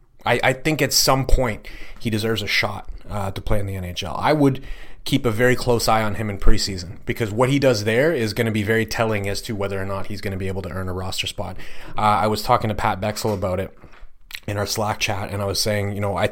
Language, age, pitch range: English, 30-49, 100-125 Hz